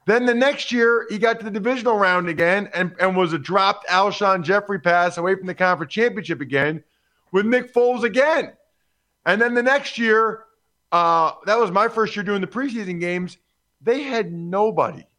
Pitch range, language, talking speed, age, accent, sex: 155-210 Hz, English, 180 wpm, 40-59, American, male